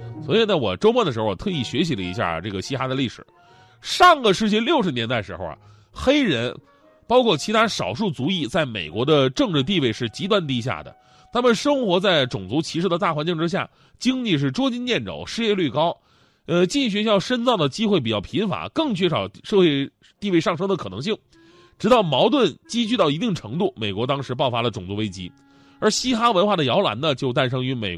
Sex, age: male, 30-49